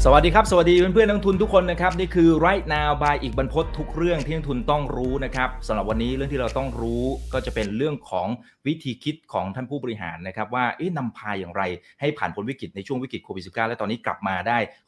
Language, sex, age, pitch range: Thai, male, 30-49, 115-160 Hz